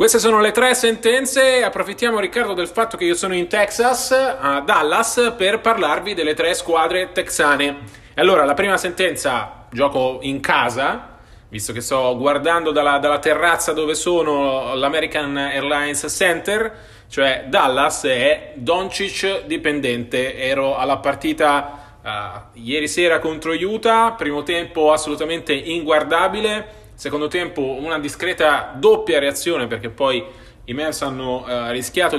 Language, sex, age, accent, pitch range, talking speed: Italian, male, 30-49, native, 140-185 Hz, 130 wpm